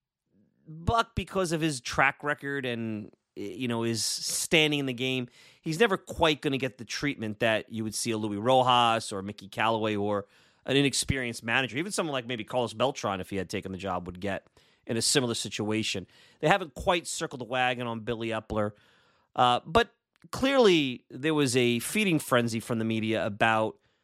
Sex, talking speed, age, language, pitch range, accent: male, 185 wpm, 30-49, English, 115-155 Hz, American